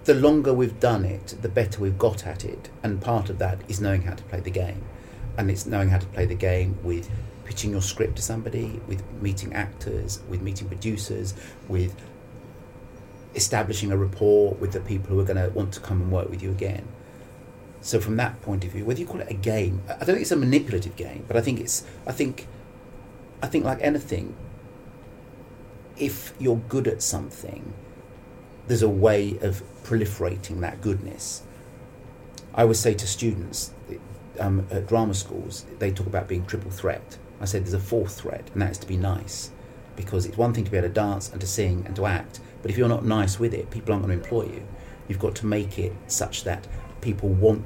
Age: 40-59